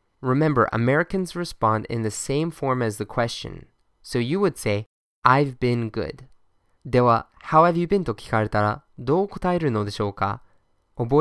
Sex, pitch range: male, 105-150 Hz